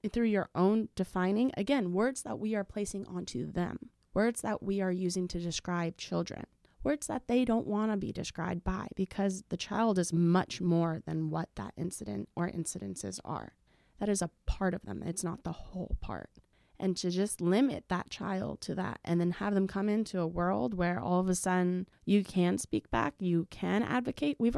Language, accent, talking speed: English, American, 200 wpm